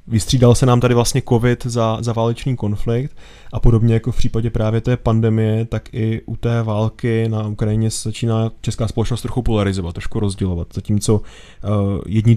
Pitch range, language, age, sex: 110-120 Hz, Czech, 20-39, male